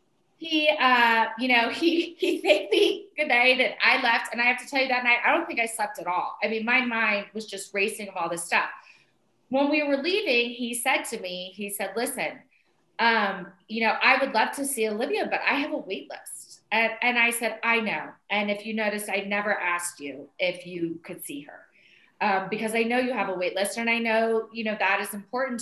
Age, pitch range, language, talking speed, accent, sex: 30-49, 200-240 Hz, English, 235 wpm, American, female